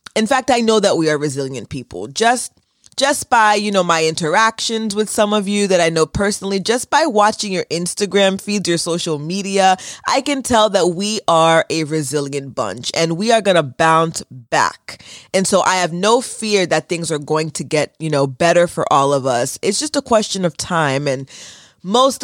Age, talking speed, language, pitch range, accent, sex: 20-39, 205 wpm, English, 155-205 Hz, American, female